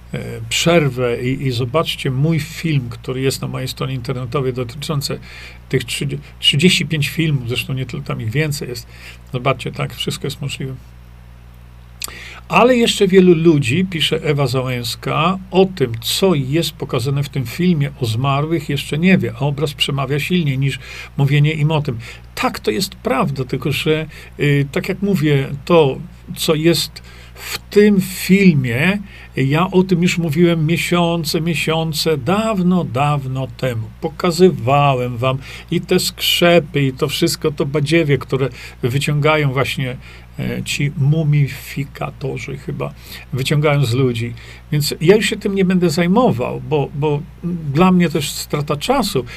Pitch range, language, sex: 130-170 Hz, Polish, male